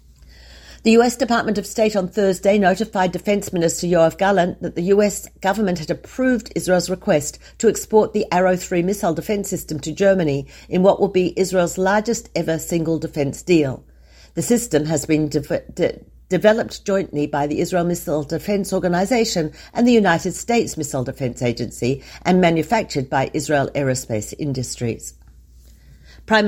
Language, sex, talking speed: Hebrew, female, 150 wpm